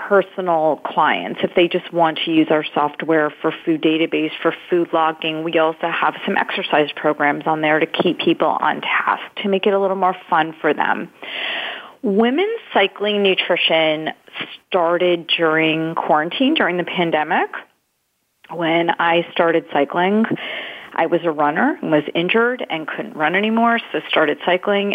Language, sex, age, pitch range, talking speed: English, female, 40-59, 160-195 Hz, 155 wpm